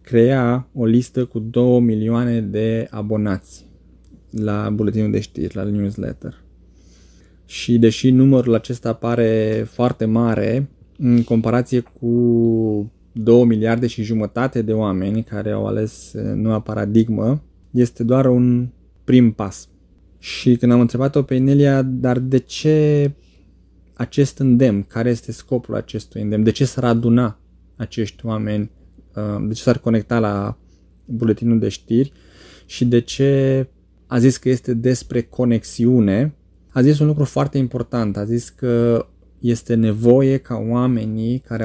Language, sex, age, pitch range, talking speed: Romanian, male, 20-39, 110-125 Hz, 135 wpm